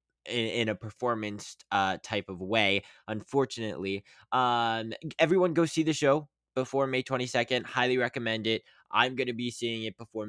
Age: 20-39